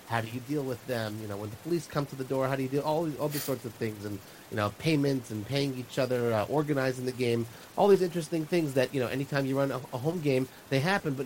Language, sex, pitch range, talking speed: English, male, 110-130 Hz, 280 wpm